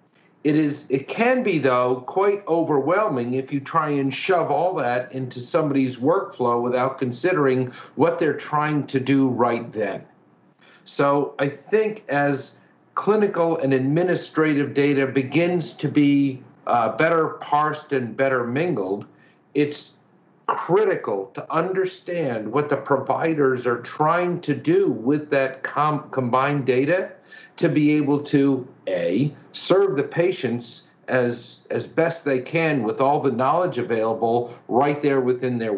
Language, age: English, 50-69